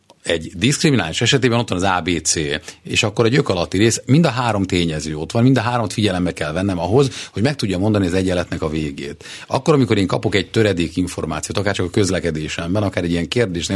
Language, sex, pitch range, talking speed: Hungarian, male, 95-130 Hz, 215 wpm